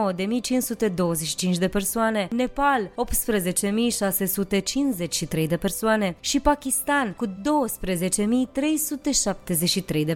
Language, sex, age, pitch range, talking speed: Romanian, female, 20-39, 185-255 Hz, 75 wpm